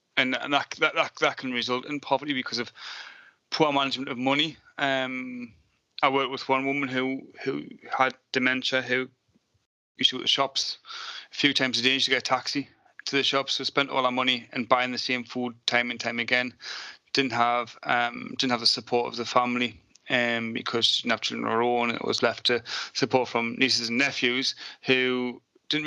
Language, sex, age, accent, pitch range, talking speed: English, male, 30-49, British, 115-135 Hz, 205 wpm